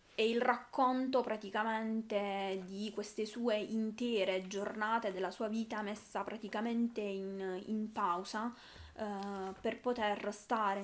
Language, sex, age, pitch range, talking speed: Italian, female, 20-39, 200-220 Hz, 115 wpm